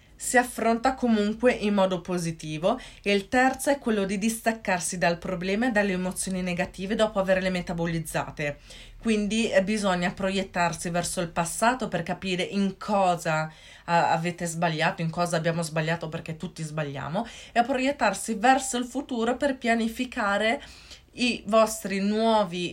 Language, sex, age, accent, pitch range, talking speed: Italian, female, 30-49, native, 175-225 Hz, 140 wpm